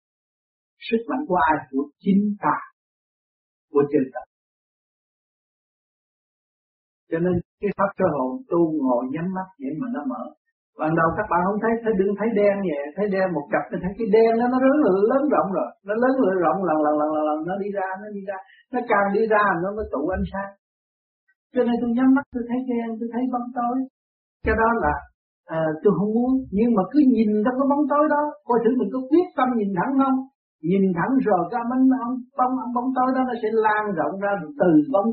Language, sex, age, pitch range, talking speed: Vietnamese, male, 60-79, 175-245 Hz, 225 wpm